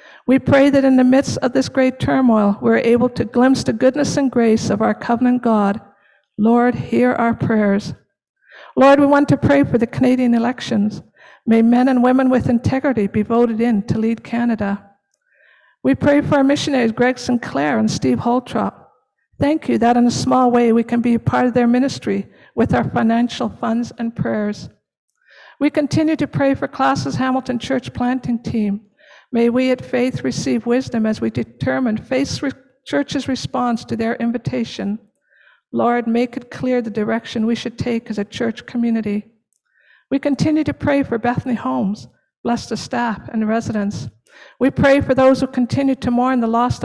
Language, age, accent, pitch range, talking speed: English, 60-79, American, 220-255 Hz, 175 wpm